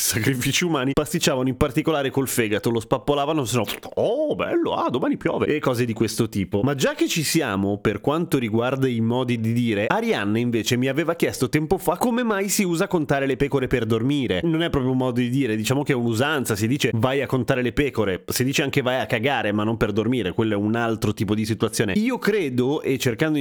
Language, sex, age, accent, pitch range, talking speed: Italian, male, 30-49, native, 115-145 Hz, 225 wpm